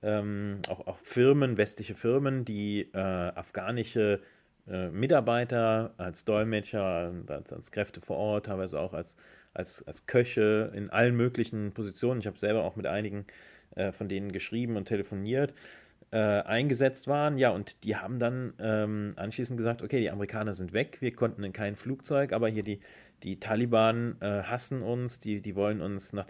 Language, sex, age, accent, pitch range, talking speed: German, male, 30-49, German, 100-120 Hz, 170 wpm